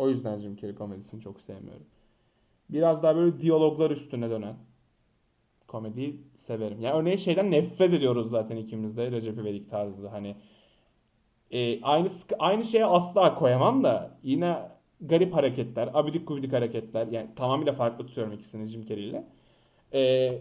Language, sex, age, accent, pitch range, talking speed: Turkish, male, 30-49, native, 120-200 Hz, 145 wpm